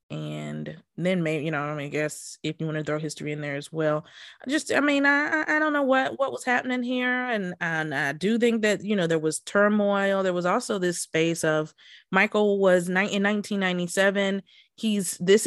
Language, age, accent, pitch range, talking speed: English, 20-39, American, 165-200 Hz, 210 wpm